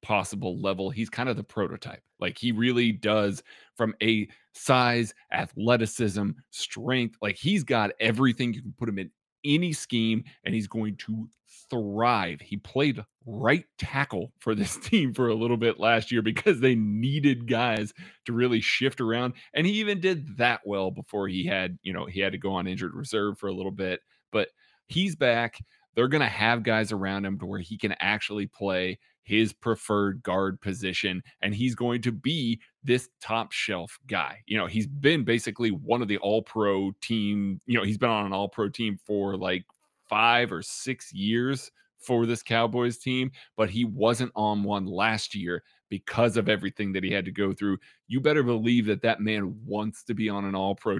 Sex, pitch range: male, 100-120 Hz